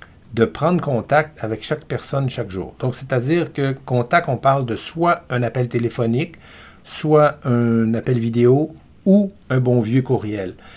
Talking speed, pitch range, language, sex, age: 155 wpm, 115-155 Hz, French, male, 60-79